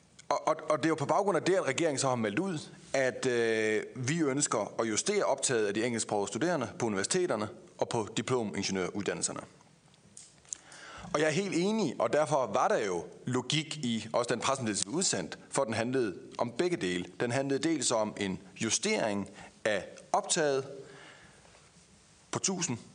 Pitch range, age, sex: 120-165 Hz, 30-49, male